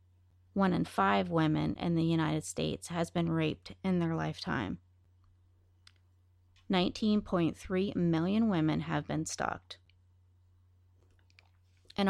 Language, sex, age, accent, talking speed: English, female, 30-49, American, 105 wpm